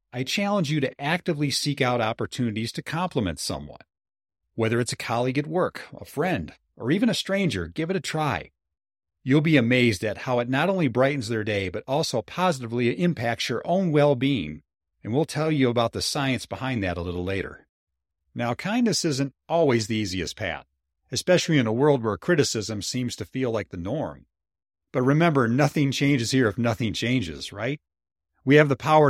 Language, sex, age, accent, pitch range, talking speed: English, male, 40-59, American, 100-145 Hz, 185 wpm